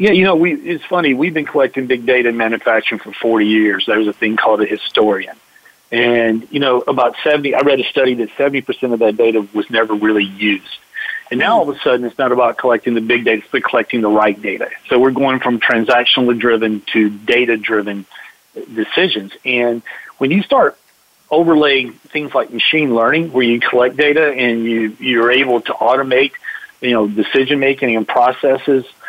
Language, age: English, 40-59